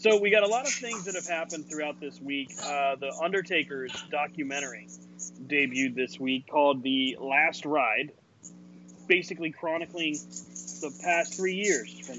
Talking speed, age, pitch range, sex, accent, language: 155 wpm, 30-49, 125-165 Hz, male, American, English